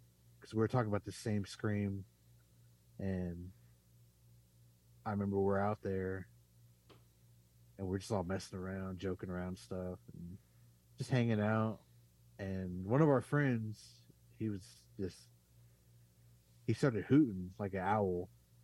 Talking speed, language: 130 wpm, English